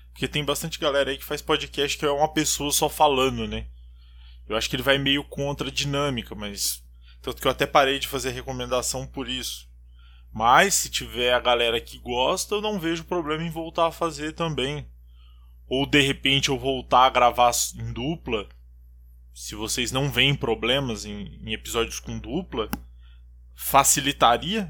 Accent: Brazilian